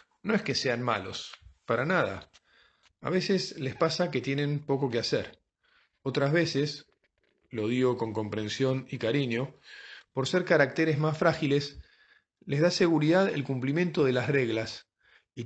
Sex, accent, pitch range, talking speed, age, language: male, Argentinian, 120-155 Hz, 150 wpm, 40-59, Spanish